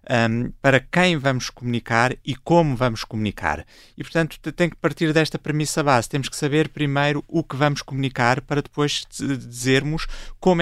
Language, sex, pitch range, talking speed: Portuguese, male, 125-145 Hz, 160 wpm